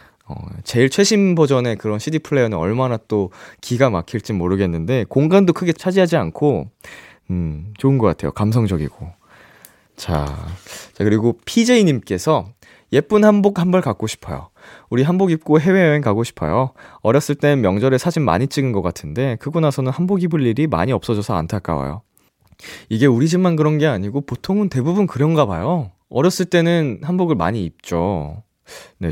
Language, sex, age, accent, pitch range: Korean, male, 20-39, native, 100-150 Hz